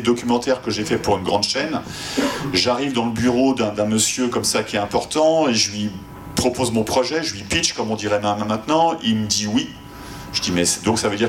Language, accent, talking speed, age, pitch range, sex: French, French, 235 wpm, 40-59, 100-125 Hz, male